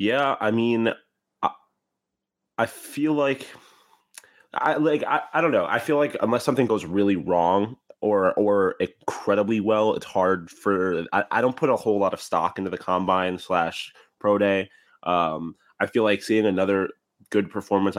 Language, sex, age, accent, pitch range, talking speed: English, male, 20-39, American, 90-105 Hz, 170 wpm